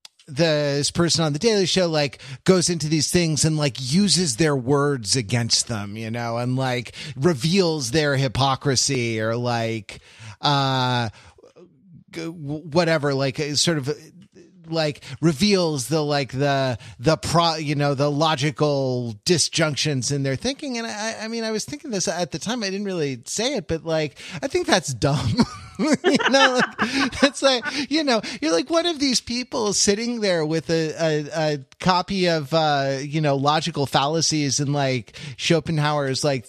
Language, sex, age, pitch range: English, male, 30-49, 140-190 Hz